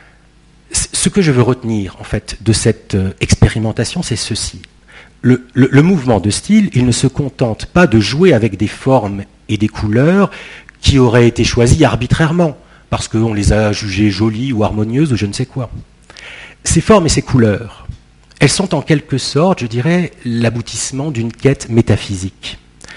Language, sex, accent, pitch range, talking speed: French, male, French, 105-145 Hz, 170 wpm